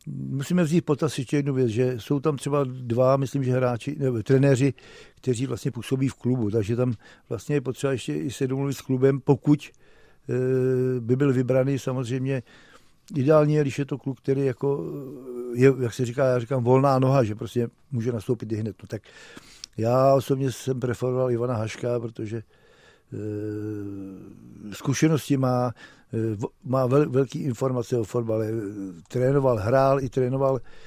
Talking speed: 150 wpm